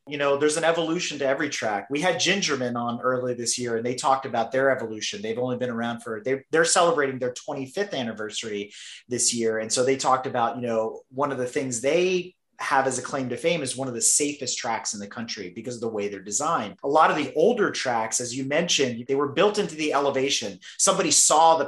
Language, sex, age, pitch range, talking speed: English, male, 30-49, 130-170 Hz, 235 wpm